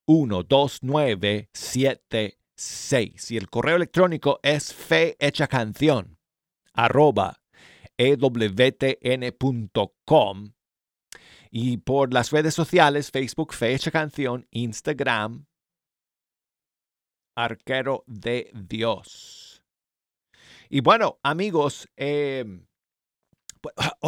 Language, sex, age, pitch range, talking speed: Spanish, male, 50-69, 115-155 Hz, 60 wpm